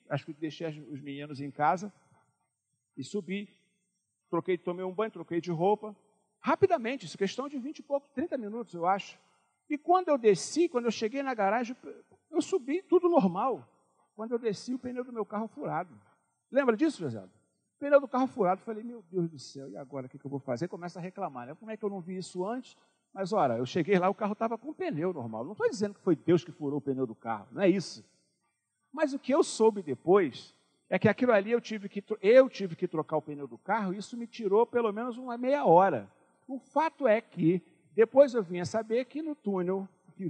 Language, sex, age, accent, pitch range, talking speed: Portuguese, male, 50-69, Brazilian, 170-250 Hz, 225 wpm